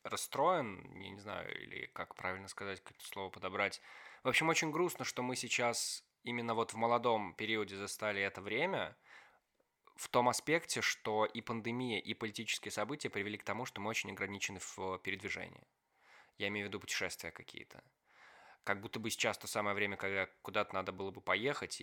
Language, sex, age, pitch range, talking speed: Russian, male, 20-39, 95-115 Hz, 170 wpm